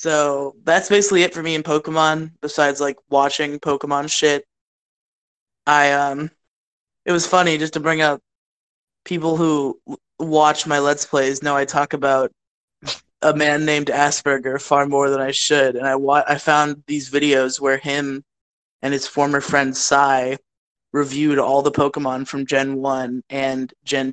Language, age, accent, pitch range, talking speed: English, 20-39, American, 140-155 Hz, 160 wpm